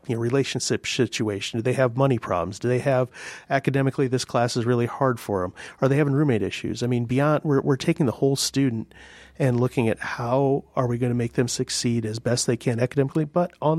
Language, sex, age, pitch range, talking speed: English, male, 40-59, 120-140 Hz, 220 wpm